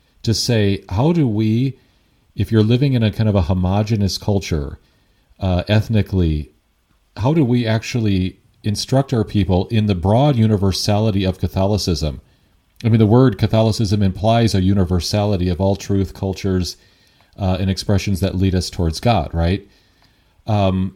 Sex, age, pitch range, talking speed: male, 40-59, 90-110 Hz, 150 wpm